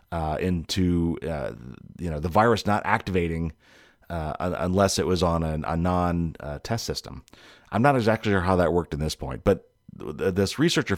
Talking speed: 180 wpm